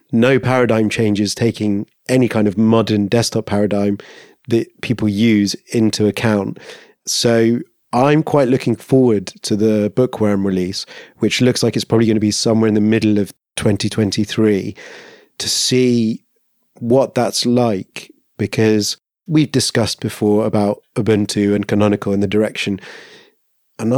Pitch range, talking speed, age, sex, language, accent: 105-115 Hz, 140 wpm, 30-49, male, English, British